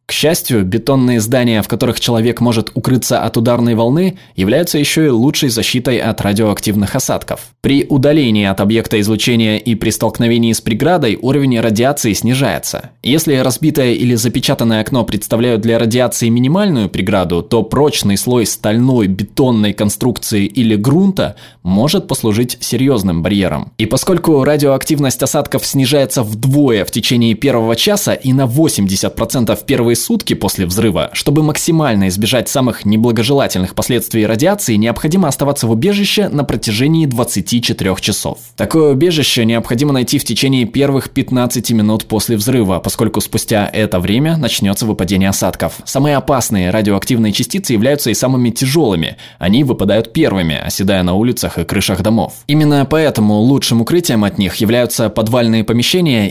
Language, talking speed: Russian, 140 wpm